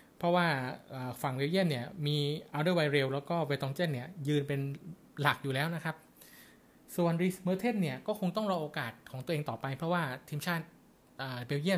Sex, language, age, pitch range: male, Thai, 20-39, 135-170 Hz